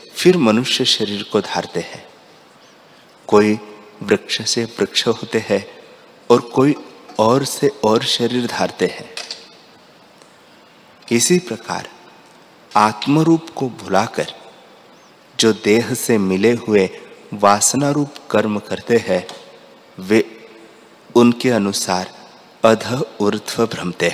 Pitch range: 105-125 Hz